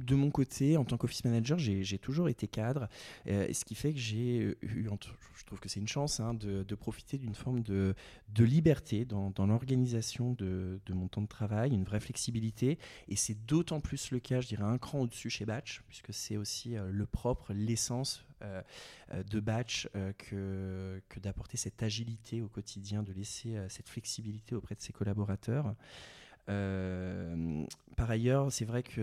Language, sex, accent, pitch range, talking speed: French, male, French, 100-120 Hz, 190 wpm